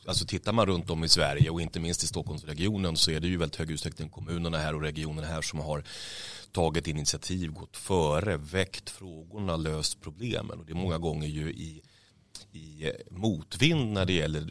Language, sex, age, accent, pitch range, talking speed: Swedish, male, 30-49, native, 80-100 Hz, 195 wpm